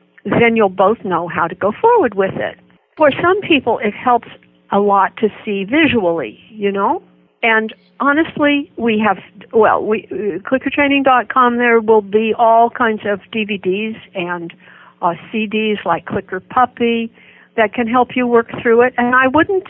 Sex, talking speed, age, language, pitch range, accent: female, 160 wpm, 60-79, English, 190-250 Hz, American